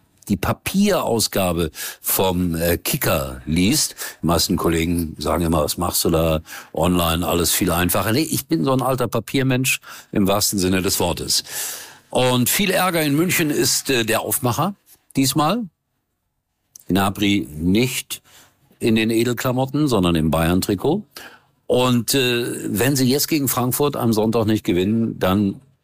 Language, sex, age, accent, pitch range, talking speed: German, male, 50-69, German, 90-130 Hz, 145 wpm